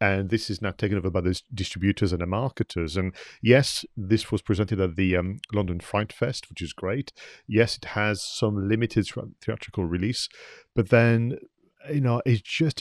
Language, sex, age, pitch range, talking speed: English, male, 40-59, 95-115 Hz, 185 wpm